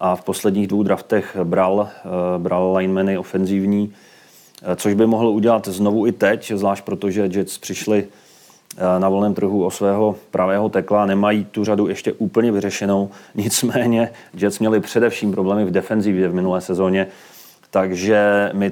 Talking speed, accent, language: 145 wpm, native, Czech